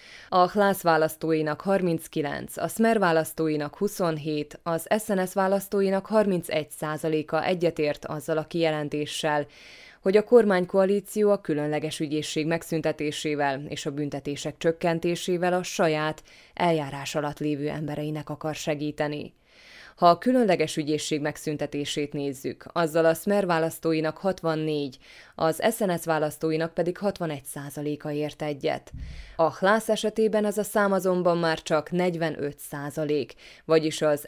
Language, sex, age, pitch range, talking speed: Hungarian, female, 20-39, 150-180 Hz, 120 wpm